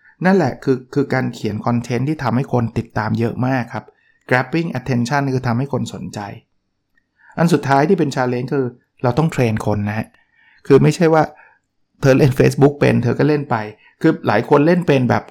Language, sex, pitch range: Thai, male, 115-140 Hz